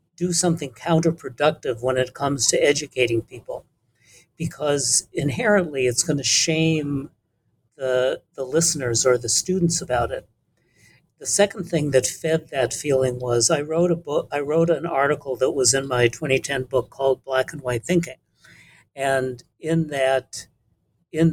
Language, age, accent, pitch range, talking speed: English, 60-79, American, 125-160 Hz, 150 wpm